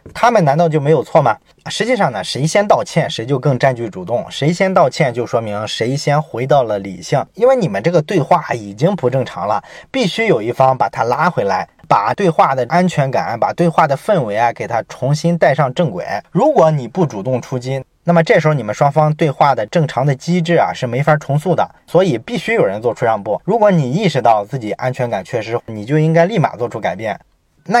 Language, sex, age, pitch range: Chinese, male, 20-39, 130-170 Hz